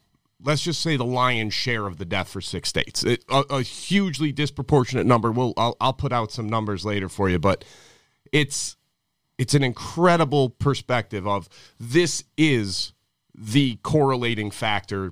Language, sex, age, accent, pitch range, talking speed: English, male, 30-49, American, 110-150 Hz, 160 wpm